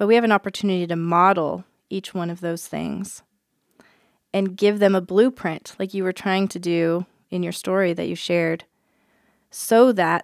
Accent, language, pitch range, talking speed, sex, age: American, English, 180-215 Hz, 180 wpm, female, 20-39